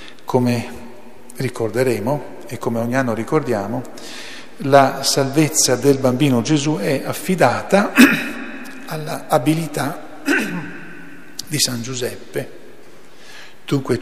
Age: 50-69